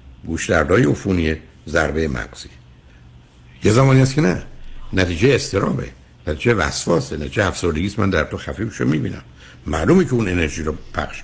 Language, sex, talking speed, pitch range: Persian, male, 150 wpm, 65-110 Hz